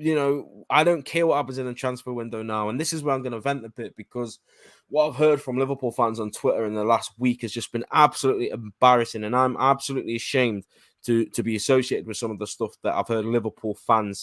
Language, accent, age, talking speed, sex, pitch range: English, British, 20-39, 245 wpm, male, 110-135 Hz